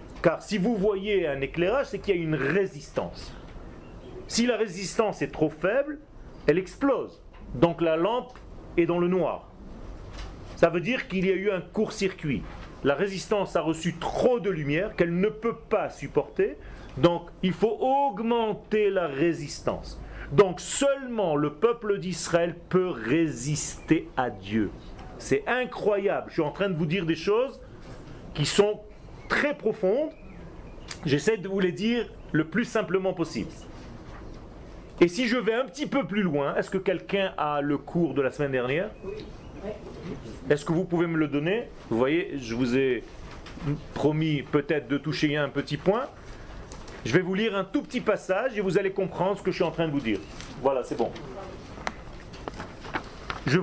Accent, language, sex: French, French, male